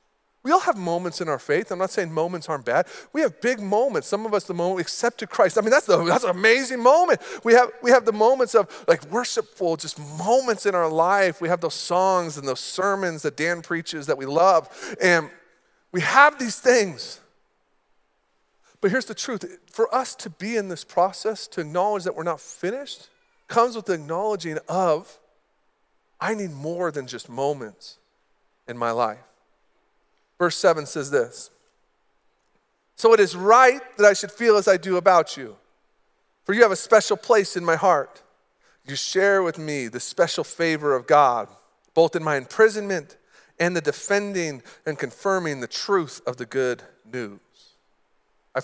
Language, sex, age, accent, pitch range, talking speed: English, male, 40-59, American, 150-220 Hz, 185 wpm